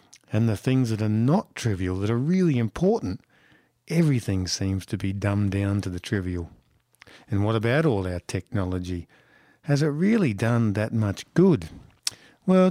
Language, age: English, 50-69